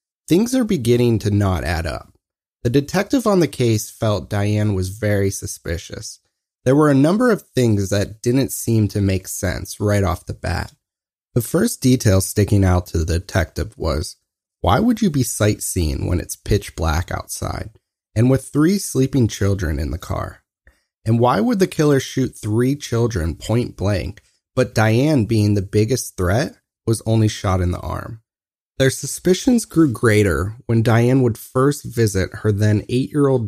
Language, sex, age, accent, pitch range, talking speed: English, male, 30-49, American, 95-125 Hz, 170 wpm